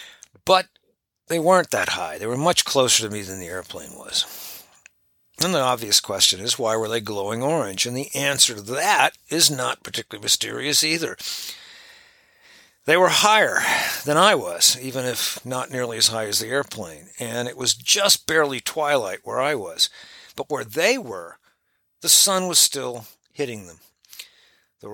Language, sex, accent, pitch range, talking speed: English, male, American, 105-145 Hz, 170 wpm